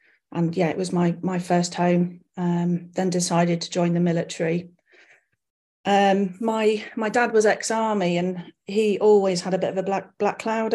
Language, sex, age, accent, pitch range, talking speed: English, female, 40-59, British, 160-190 Hz, 180 wpm